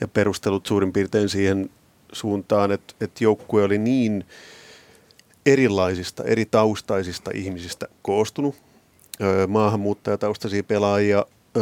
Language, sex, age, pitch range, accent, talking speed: Finnish, male, 30-49, 95-110 Hz, native, 95 wpm